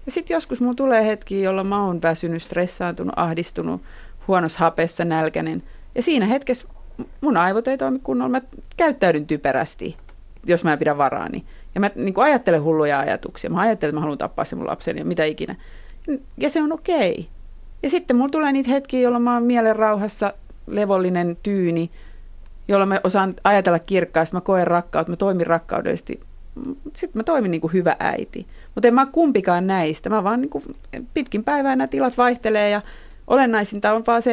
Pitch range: 165-240 Hz